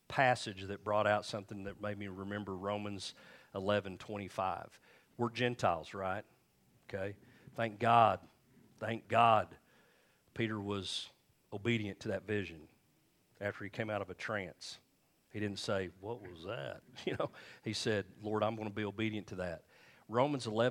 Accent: American